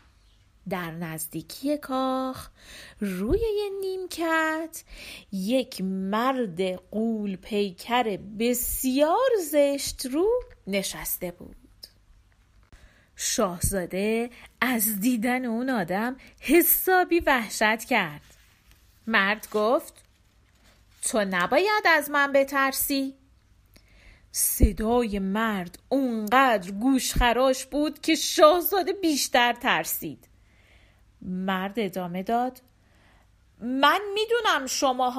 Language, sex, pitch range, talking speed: Persian, female, 190-280 Hz, 75 wpm